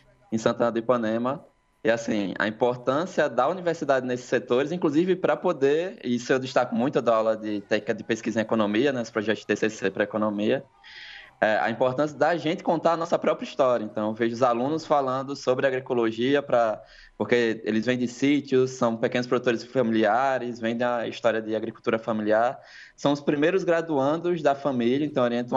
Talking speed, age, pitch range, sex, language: 180 wpm, 20-39, 110-135 Hz, male, Portuguese